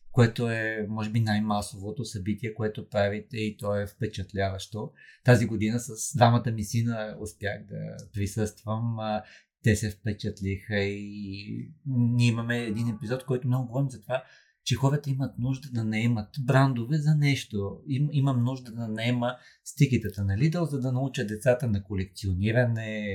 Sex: male